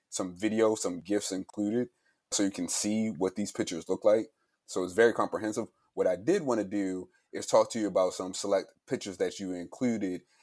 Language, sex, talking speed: English, male, 200 wpm